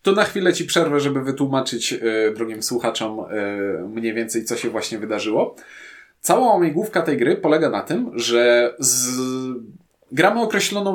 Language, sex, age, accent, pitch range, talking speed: Polish, male, 20-39, native, 120-165 Hz, 155 wpm